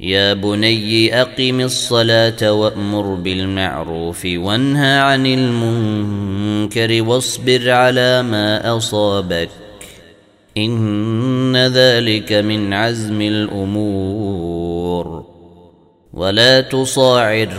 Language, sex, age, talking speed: Arabic, male, 30-49, 70 wpm